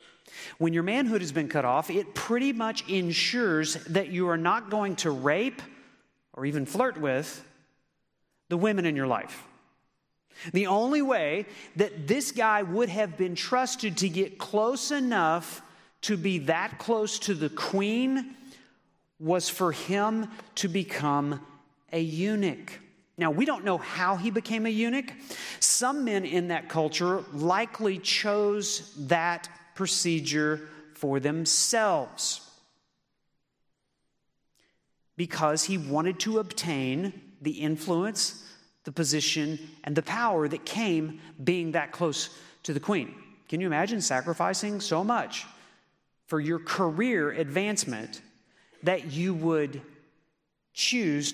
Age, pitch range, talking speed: 40-59, 155-210 Hz, 125 wpm